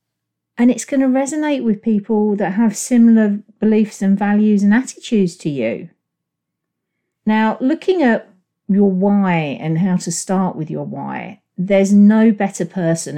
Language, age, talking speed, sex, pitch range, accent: English, 40-59, 150 wpm, female, 150-195 Hz, British